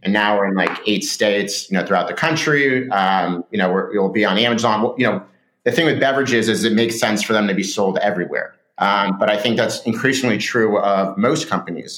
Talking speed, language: 225 wpm, English